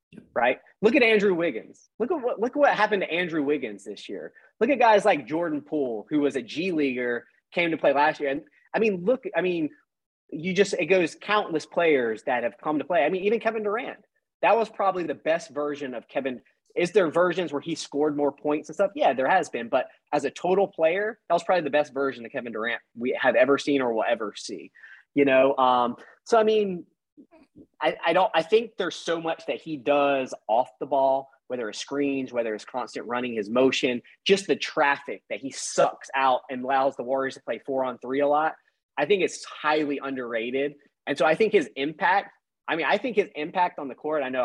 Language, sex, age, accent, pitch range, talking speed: English, male, 30-49, American, 135-195 Hz, 225 wpm